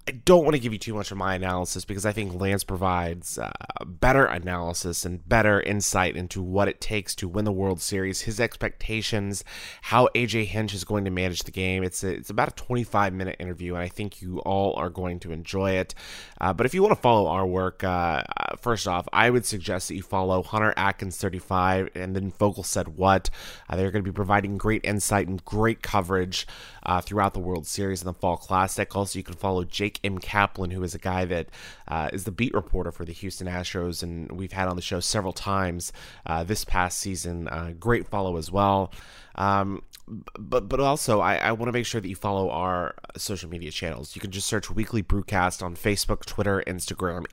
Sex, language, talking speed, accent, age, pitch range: male, English, 215 wpm, American, 20-39, 90-105 Hz